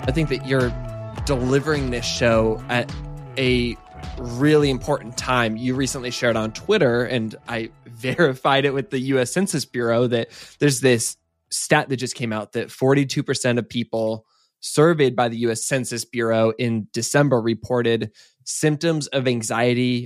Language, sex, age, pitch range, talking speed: English, male, 20-39, 115-135 Hz, 150 wpm